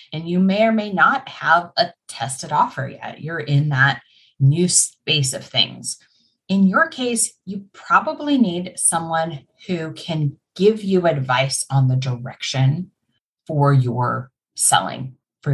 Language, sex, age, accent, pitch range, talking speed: English, female, 30-49, American, 135-220 Hz, 145 wpm